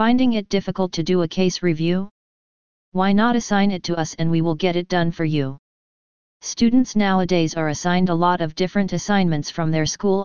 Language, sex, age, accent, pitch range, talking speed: English, female, 40-59, American, 165-190 Hz, 200 wpm